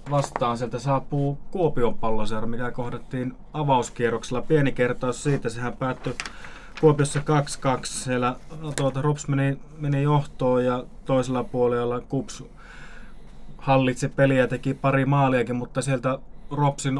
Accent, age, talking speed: native, 20-39, 125 wpm